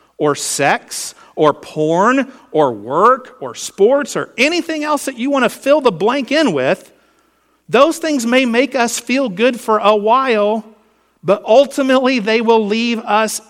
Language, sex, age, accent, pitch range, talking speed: English, male, 50-69, American, 185-245 Hz, 160 wpm